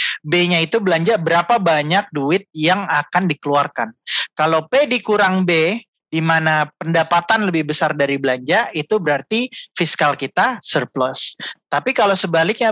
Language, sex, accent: Indonesian, male, native